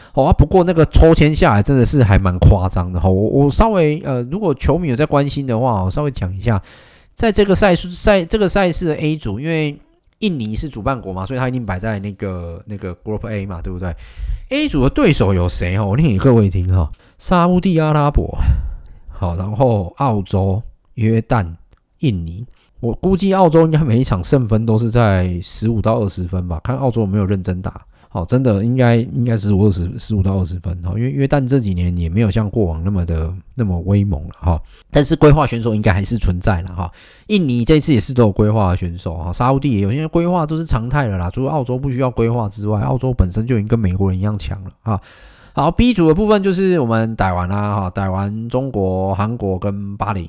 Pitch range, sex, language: 95-135 Hz, male, Chinese